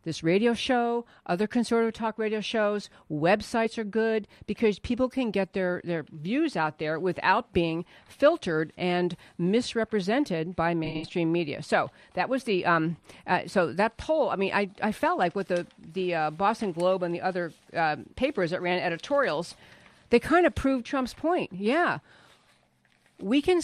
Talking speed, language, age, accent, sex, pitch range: 170 wpm, English, 50-69, American, female, 175-245 Hz